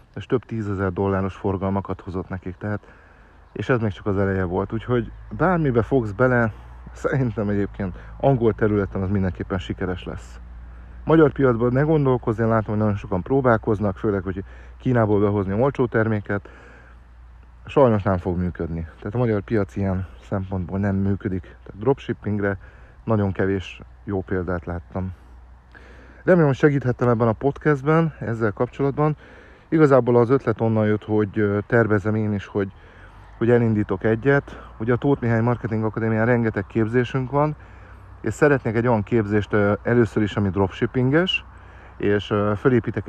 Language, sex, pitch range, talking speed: Hungarian, male, 95-115 Hz, 145 wpm